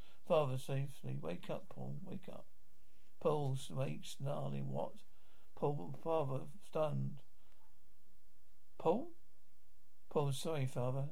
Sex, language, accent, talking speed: male, English, British, 95 wpm